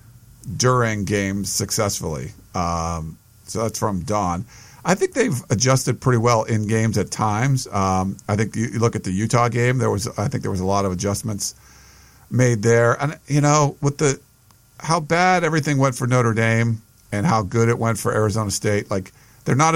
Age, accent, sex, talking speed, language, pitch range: 50-69, American, male, 190 wpm, English, 105-125 Hz